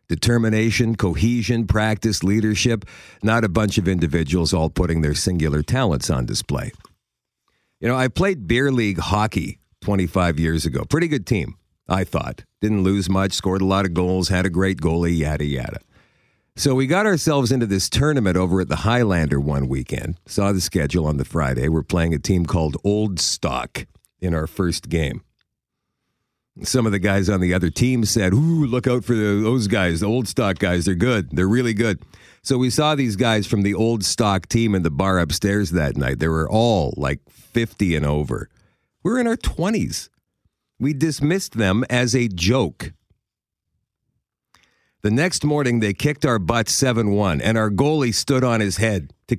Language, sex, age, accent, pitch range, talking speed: English, male, 50-69, American, 90-120 Hz, 180 wpm